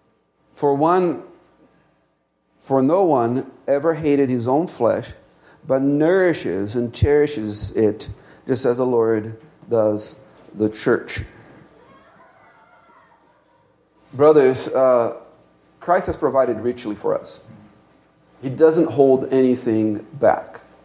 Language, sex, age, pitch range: English, male, 40-59, 120-150 Hz